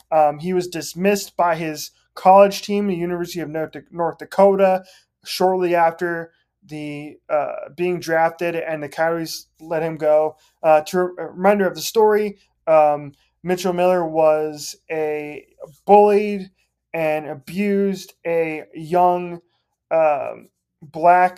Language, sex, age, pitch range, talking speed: English, male, 20-39, 155-180 Hz, 130 wpm